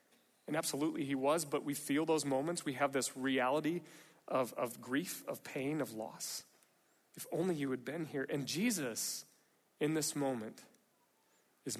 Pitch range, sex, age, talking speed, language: 135-170 Hz, male, 30-49, 165 wpm, English